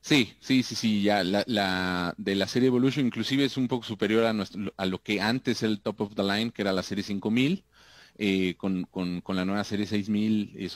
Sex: male